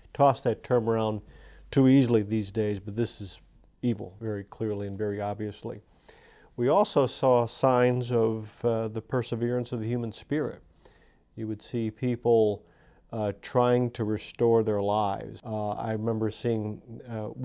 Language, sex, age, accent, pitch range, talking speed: English, male, 40-59, American, 105-120 Hz, 150 wpm